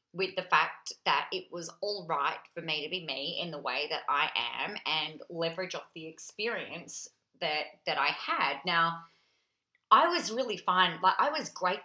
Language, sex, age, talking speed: English, female, 30-49, 185 wpm